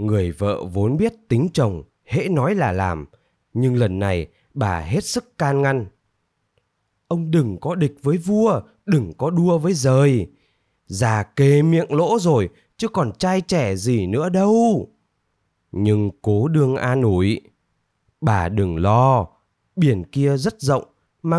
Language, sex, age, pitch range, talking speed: Vietnamese, male, 20-39, 105-165 Hz, 150 wpm